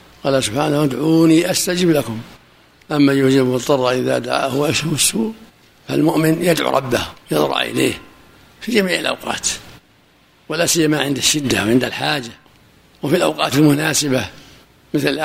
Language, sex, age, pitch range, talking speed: Arabic, male, 60-79, 135-155 Hz, 120 wpm